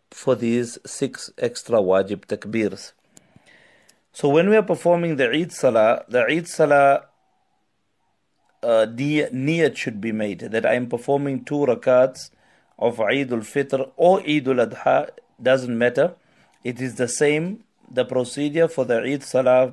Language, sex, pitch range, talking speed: English, male, 120-150 Hz, 140 wpm